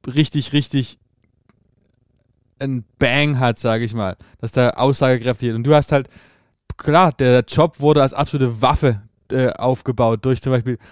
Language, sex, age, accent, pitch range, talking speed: German, male, 20-39, German, 120-145 Hz, 155 wpm